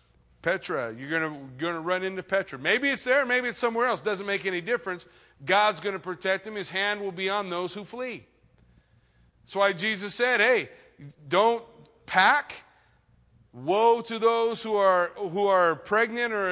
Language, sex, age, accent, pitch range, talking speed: English, male, 40-59, American, 165-220 Hz, 165 wpm